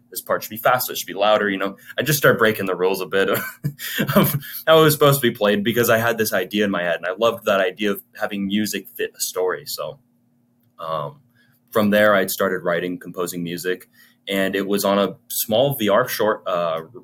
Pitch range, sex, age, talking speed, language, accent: 95-120 Hz, male, 20-39, 225 wpm, English, American